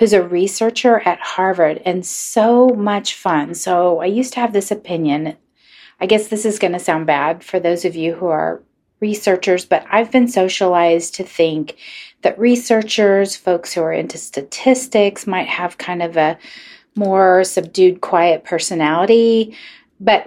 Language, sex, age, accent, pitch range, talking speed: English, female, 40-59, American, 170-215 Hz, 160 wpm